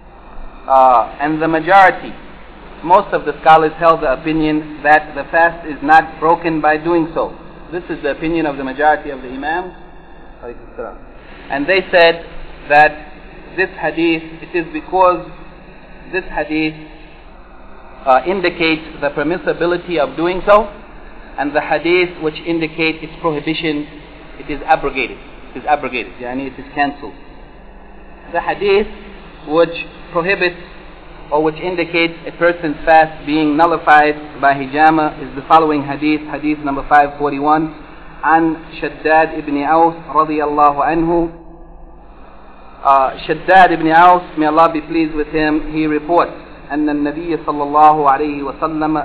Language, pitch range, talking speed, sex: English, 150-170 Hz, 135 wpm, male